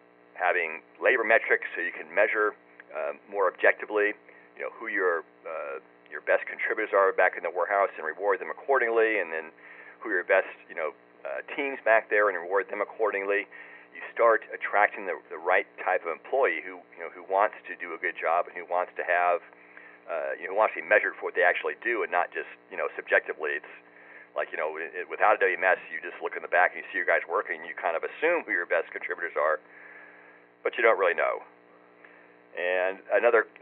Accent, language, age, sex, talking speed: American, English, 40-59, male, 215 wpm